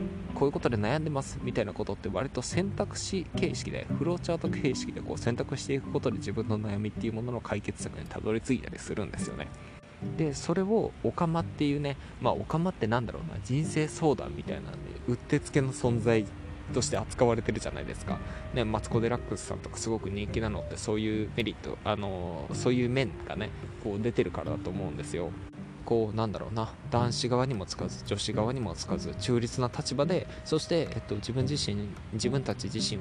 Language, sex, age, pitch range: Japanese, male, 20-39, 95-120 Hz